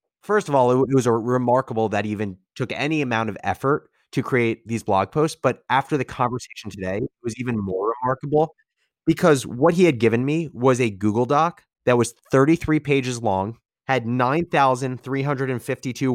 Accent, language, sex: American, English, male